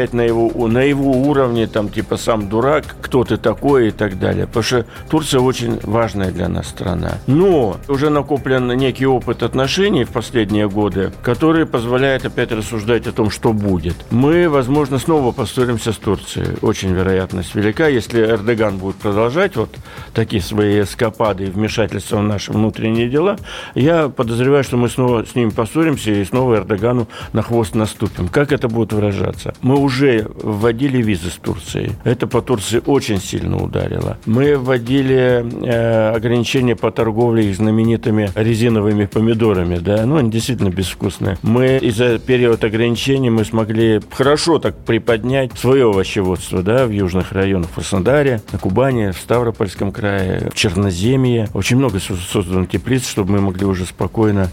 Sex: male